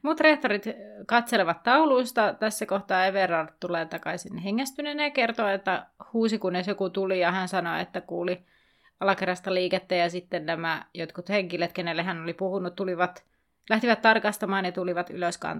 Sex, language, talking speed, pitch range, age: female, Finnish, 150 wpm, 185-235 Hz, 30-49